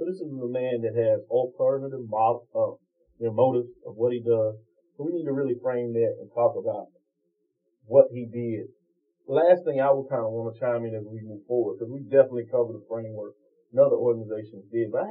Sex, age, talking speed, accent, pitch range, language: male, 30-49, 225 wpm, American, 110-135 Hz, English